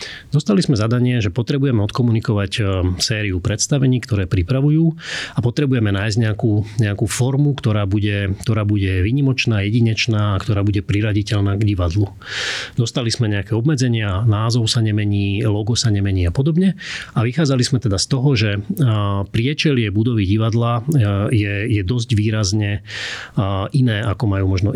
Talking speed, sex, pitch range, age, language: 140 wpm, male, 105-125 Hz, 30-49, Slovak